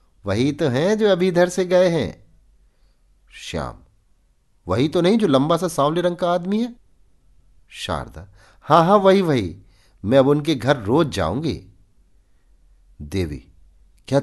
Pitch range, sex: 90-155 Hz, male